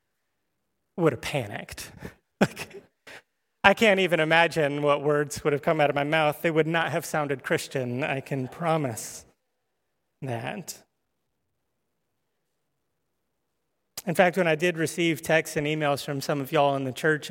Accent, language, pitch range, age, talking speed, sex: American, English, 140-170 Hz, 30-49, 145 wpm, male